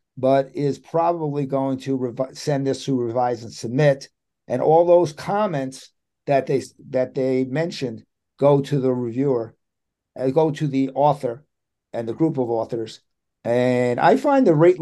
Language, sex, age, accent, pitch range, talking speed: English, male, 50-69, American, 125-145 Hz, 160 wpm